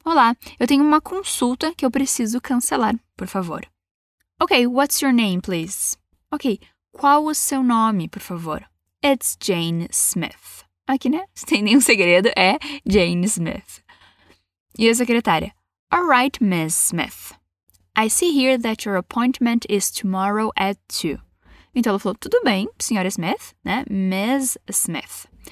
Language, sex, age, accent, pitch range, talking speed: Portuguese, female, 10-29, Brazilian, 190-260 Hz, 145 wpm